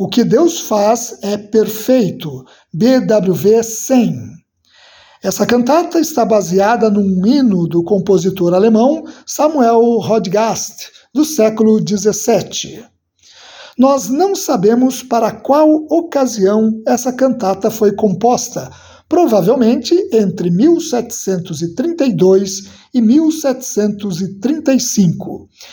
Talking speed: 85 wpm